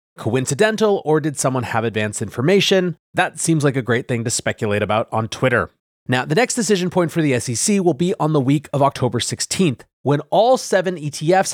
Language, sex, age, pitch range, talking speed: English, male, 30-49, 120-170 Hz, 200 wpm